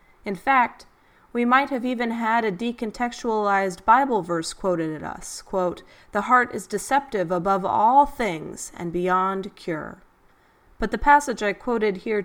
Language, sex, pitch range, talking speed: English, female, 200-250 Hz, 150 wpm